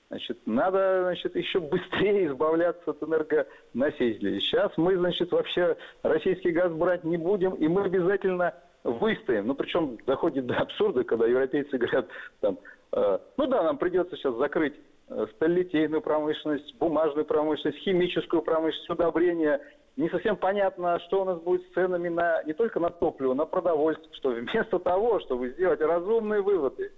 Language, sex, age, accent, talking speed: Russian, male, 50-69, native, 145 wpm